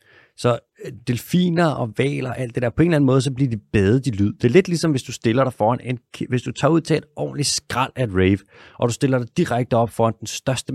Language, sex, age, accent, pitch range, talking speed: Danish, male, 30-49, native, 100-130 Hz, 275 wpm